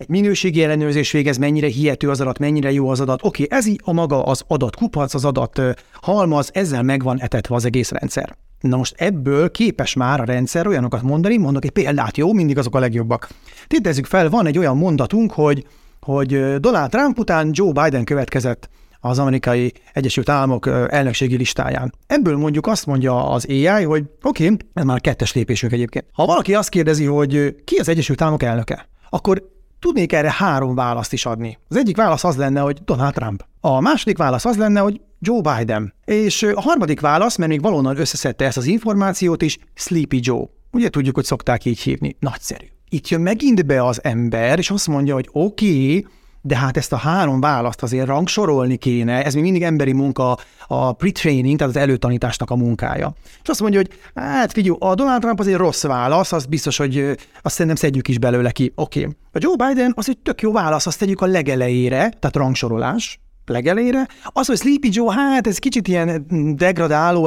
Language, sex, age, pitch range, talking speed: Hungarian, male, 30-49, 130-185 Hz, 190 wpm